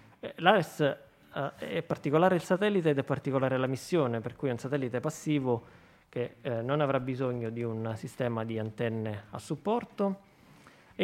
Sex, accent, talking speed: male, native, 160 wpm